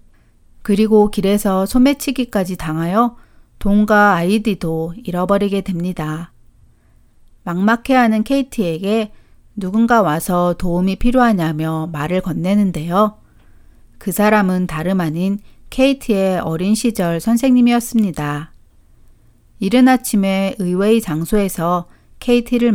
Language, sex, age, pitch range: Korean, female, 40-59, 170-225 Hz